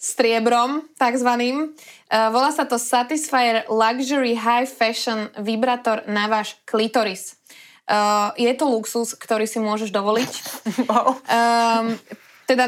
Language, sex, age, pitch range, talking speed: Slovak, female, 20-39, 220-260 Hz, 100 wpm